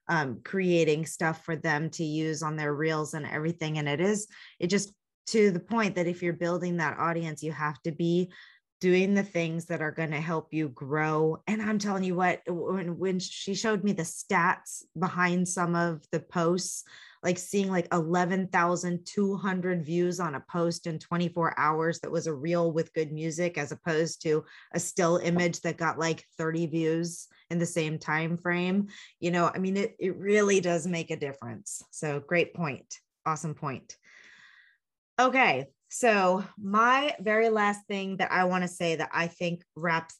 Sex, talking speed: female, 180 wpm